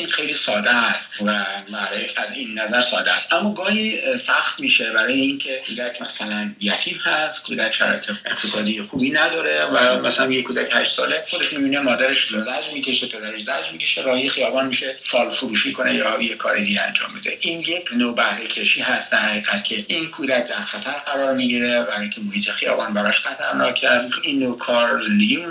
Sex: male